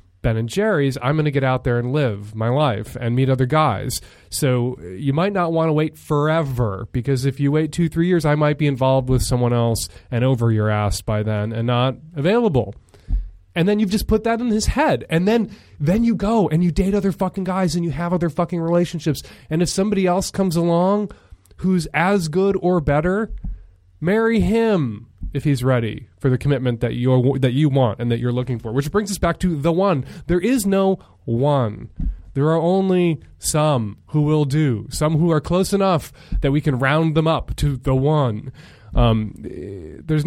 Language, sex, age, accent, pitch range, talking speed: English, male, 20-39, American, 120-180 Hz, 205 wpm